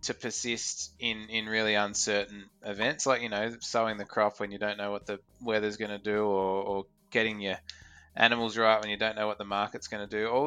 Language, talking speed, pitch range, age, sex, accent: English, 230 wpm, 100-110 Hz, 20-39, male, Australian